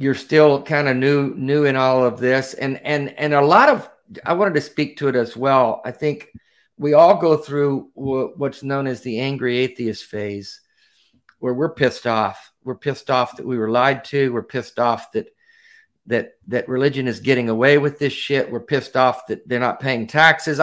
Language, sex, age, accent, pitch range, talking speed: English, male, 50-69, American, 120-150 Hz, 205 wpm